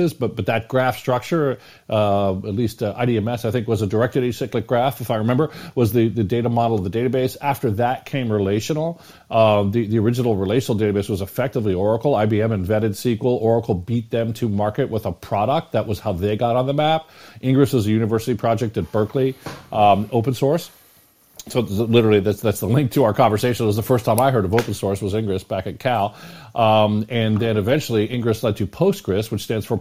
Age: 40-59